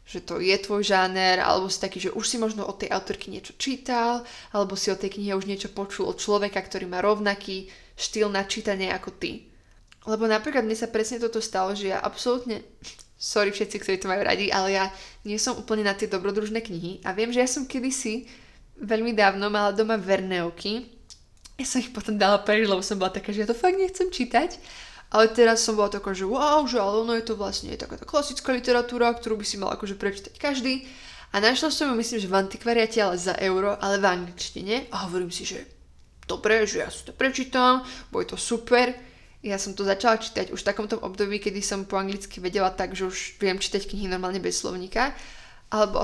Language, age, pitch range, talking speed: Slovak, 20-39, 195-235 Hz, 210 wpm